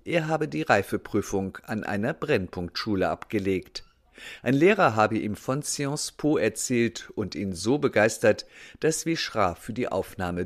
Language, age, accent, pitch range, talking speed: German, 50-69, German, 100-125 Hz, 145 wpm